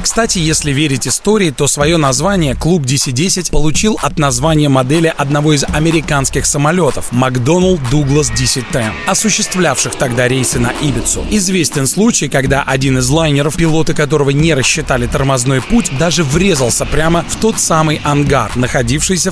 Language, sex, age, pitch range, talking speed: Russian, male, 30-49, 135-175 Hz, 140 wpm